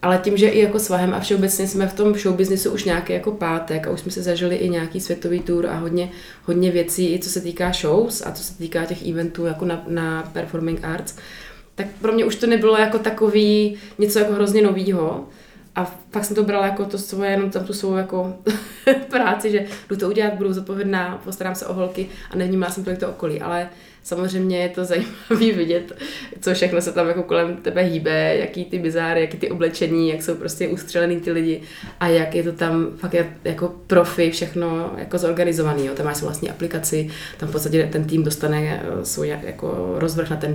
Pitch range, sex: 165-195 Hz, female